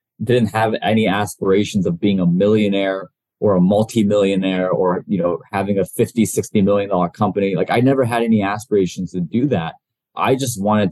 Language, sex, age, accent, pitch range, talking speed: English, male, 20-39, American, 95-110 Hz, 175 wpm